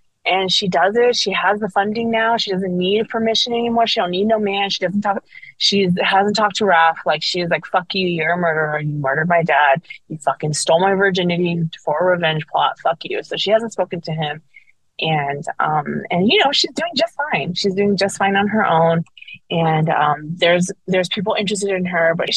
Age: 20-39